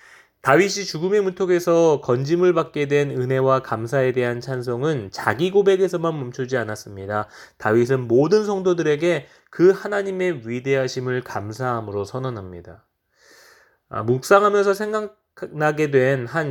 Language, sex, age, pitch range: Korean, male, 20-39, 110-170 Hz